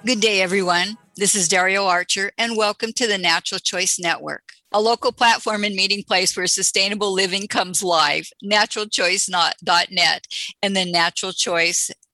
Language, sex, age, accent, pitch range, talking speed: English, female, 50-69, American, 180-230 Hz, 150 wpm